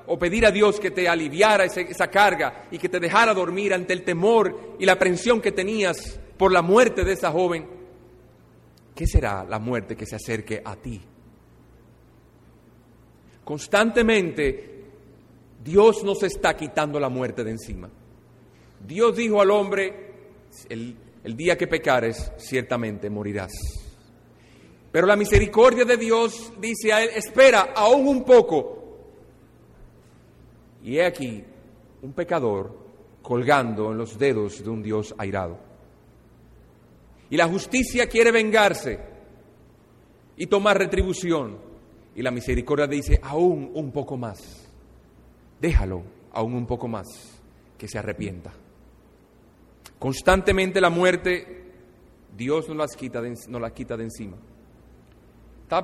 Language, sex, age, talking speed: Spanish, male, 40-59, 125 wpm